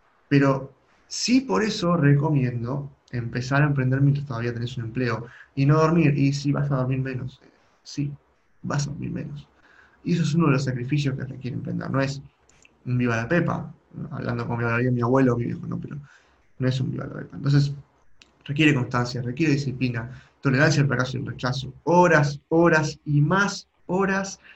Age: 20-39